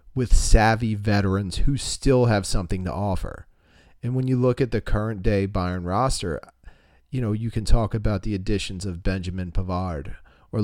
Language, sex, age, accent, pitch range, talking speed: English, male, 40-59, American, 95-120 Hz, 175 wpm